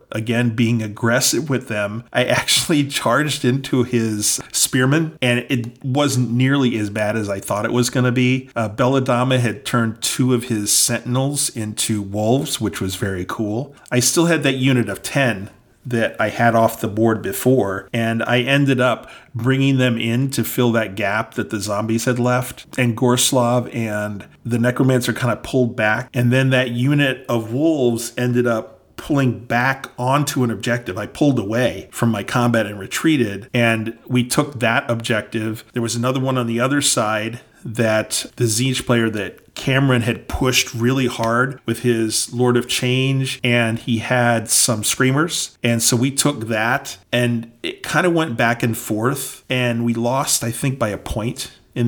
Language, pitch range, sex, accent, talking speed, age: English, 110-130 Hz, male, American, 175 wpm, 40-59